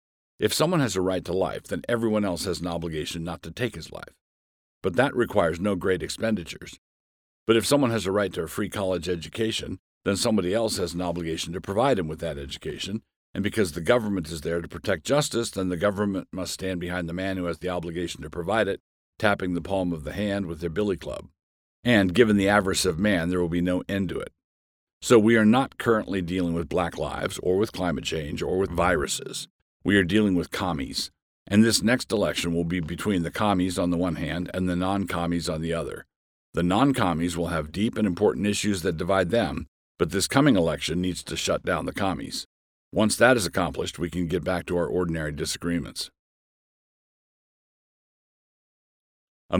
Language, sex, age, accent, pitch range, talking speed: English, male, 50-69, American, 85-100 Hz, 205 wpm